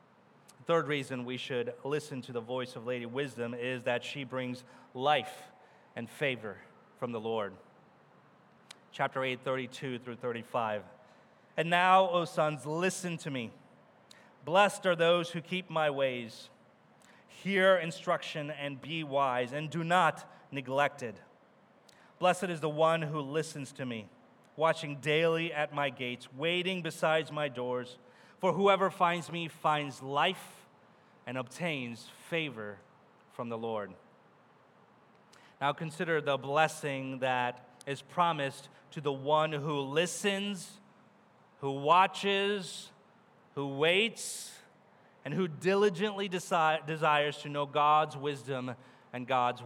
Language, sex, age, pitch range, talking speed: English, male, 30-49, 130-170 Hz, 130 wpm